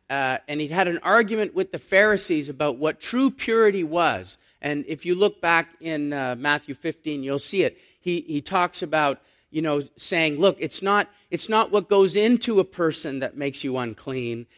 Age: 40-59